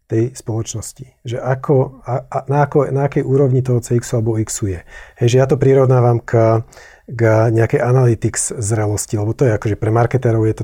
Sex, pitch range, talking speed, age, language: male, 115-135 Hz, 180 wpm, 40-59, Slovak